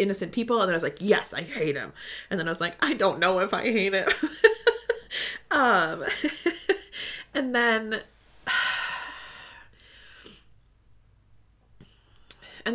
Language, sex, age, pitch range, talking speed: English, female, 20-39, 165-240 Hz, 125 wpm